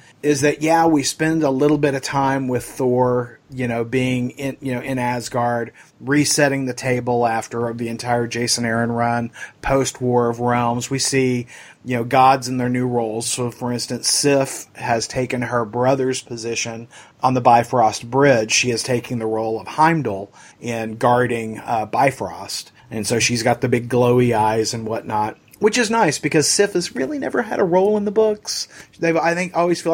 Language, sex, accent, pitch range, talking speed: English, male, American, 120-145 Hz, 190 wpm